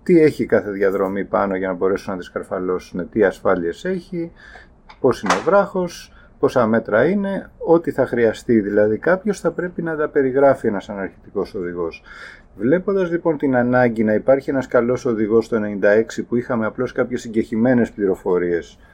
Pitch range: 120-185 Hz